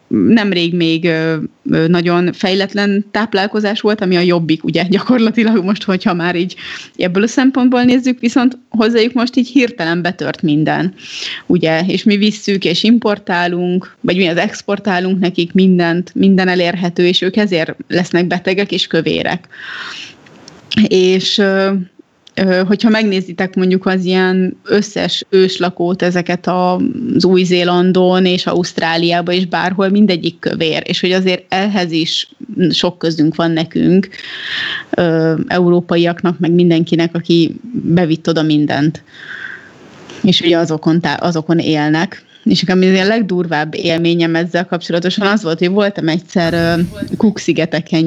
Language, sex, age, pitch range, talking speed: Hungarian, female, 20-39, 170-200 Hz, 120 wpm